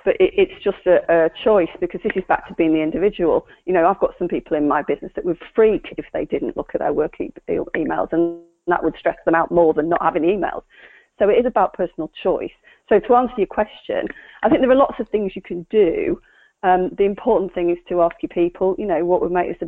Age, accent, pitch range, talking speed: 30-49, British, 165-210 Hz, 260 wpm